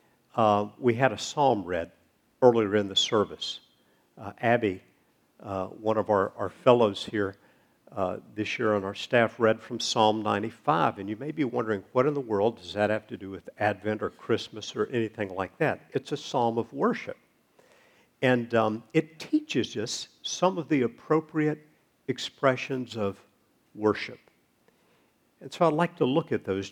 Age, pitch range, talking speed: 50-69, 105-150 Hz, 175 wpm